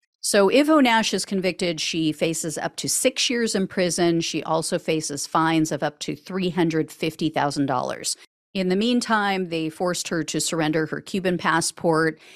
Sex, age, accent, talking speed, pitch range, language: female, 50-69, American, 155 wpm, 160-225 Hz, English